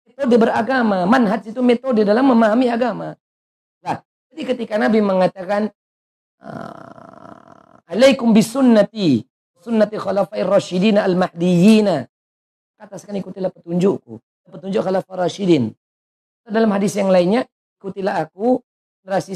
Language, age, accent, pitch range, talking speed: Indonesian, 50-69, native, 170-230 Hz, 85 wpm